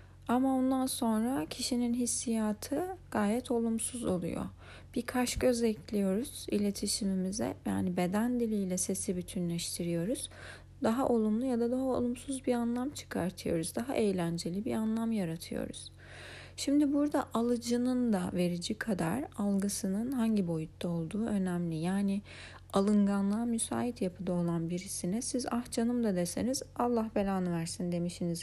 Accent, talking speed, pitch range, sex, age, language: native, 120 wpm, 180-230 Hz, female, 40-59, Turkish